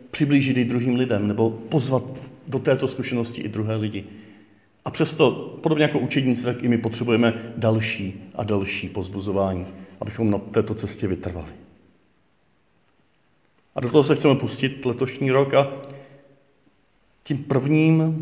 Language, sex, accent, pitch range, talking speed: Czech, male, native, 105-130 Hz, 135 wpm